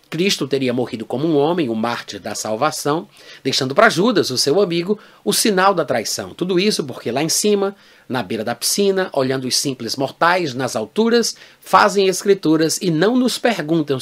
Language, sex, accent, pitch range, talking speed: Portuguese, male, Brazilian, 135-195 Hz, 180 wpm